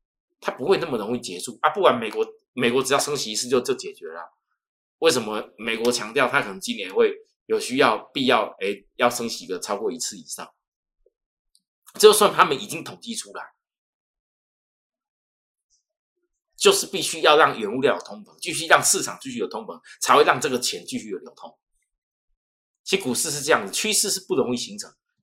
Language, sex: Chinese, male